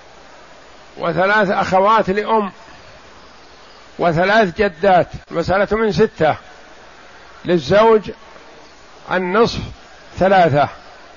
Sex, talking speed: male, 60 wpm